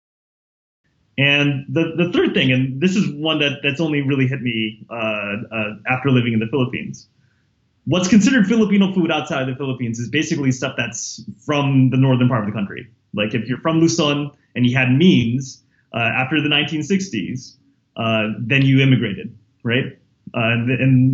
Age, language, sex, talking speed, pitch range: 20-39, English, male, 175 wpm, 120-155 Hz